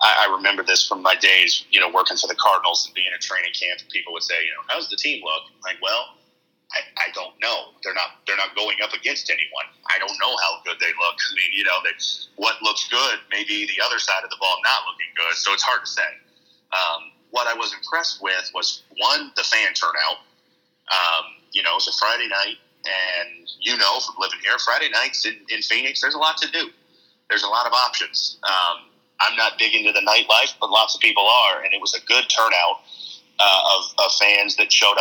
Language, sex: English, male